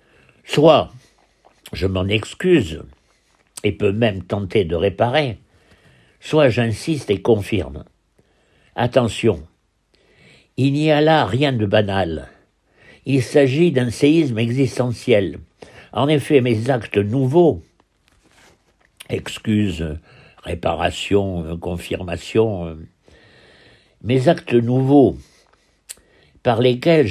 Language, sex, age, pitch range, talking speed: French, male, 60-79, 100-145 Hz, 90 wpm